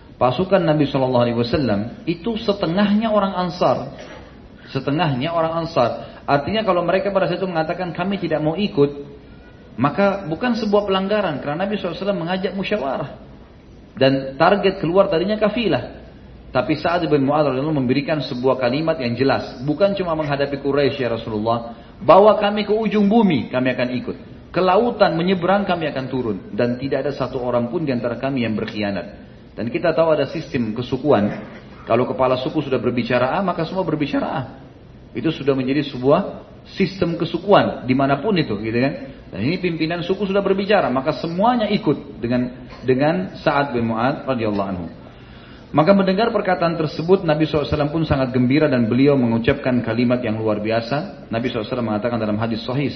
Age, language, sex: 40-59, Indonesian, male